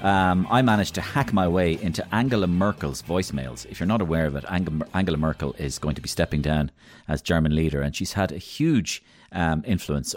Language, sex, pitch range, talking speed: English, male, 80-110 Hz, 205 wpm